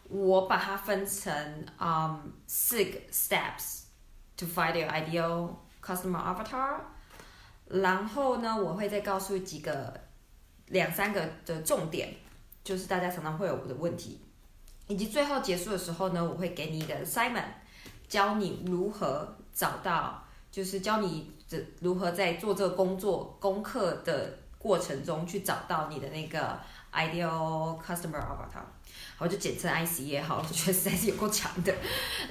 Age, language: 20-39, Chinese